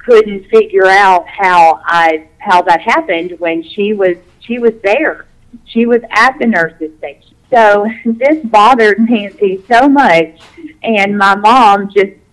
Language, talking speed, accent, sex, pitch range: English, 145 wpm, American, female, 175-230 Hz